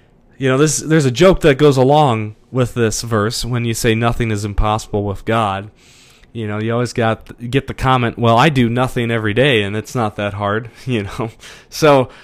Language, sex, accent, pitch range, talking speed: English, male, American, 120-185 Hz, 205 wpm